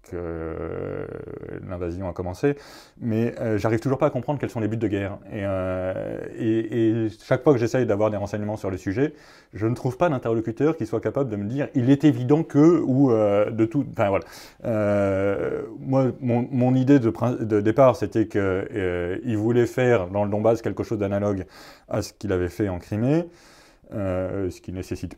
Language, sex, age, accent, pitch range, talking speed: French, male, 30-49, French, 100-120 Hz, 190 wpm